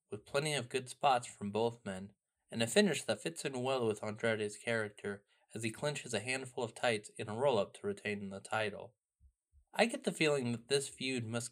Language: English